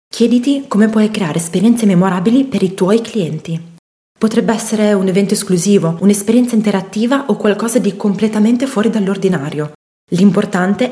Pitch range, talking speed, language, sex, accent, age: 180-225 Hz, 130 wpm, Italian, female, native, 20-39